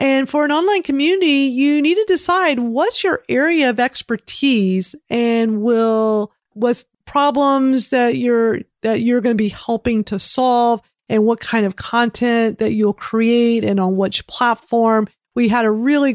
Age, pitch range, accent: 40-59, 215-255 Hz, American